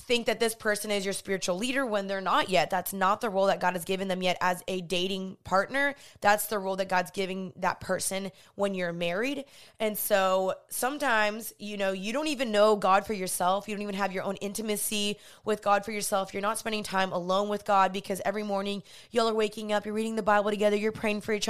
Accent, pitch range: American, 190-220 Hz